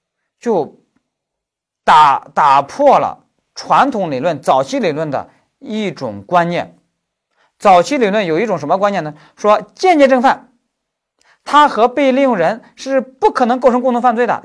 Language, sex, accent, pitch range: Chinese, male, native, 145-235 Hz